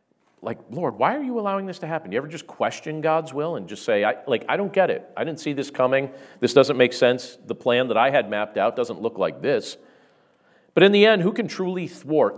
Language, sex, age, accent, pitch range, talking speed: English, male, 40-59, American, 150-205 Hz, 245 wpm